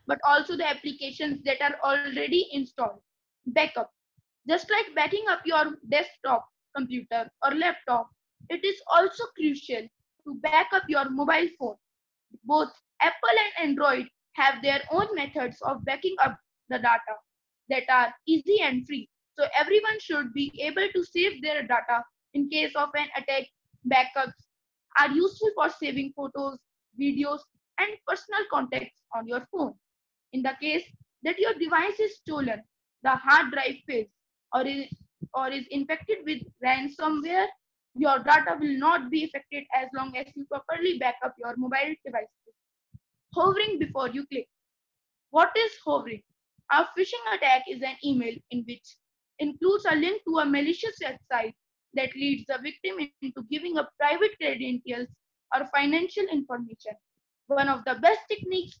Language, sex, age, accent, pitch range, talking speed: Hindi, female, 20-39, native, 265-335 Hz, 150 wpm